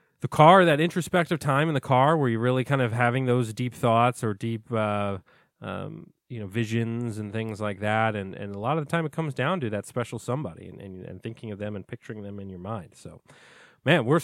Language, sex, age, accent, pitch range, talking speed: English, male, 30-49, American, 105-135 Hz, 240 wpm